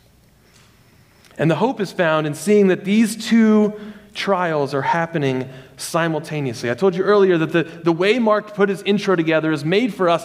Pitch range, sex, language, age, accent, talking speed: 125-180 Hz, male, English, 30-49, American, 180 wpm